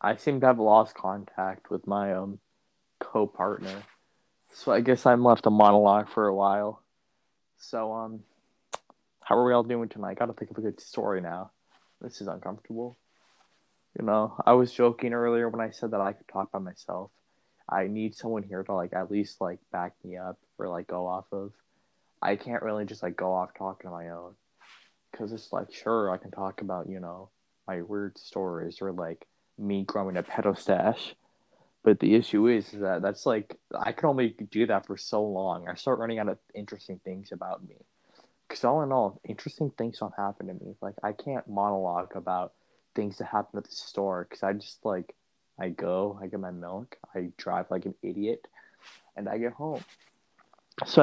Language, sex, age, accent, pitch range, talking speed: English, male, 20-39, American, 95-115 Hz, 195 wpm